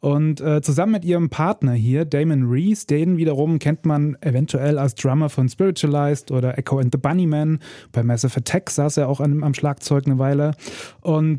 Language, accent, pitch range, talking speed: German, German, 130-155 Hz, 185 wpm